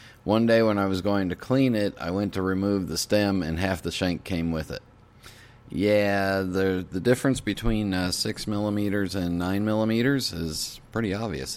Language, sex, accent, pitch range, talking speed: English, male, American, 85-110 Hz, 175 wpm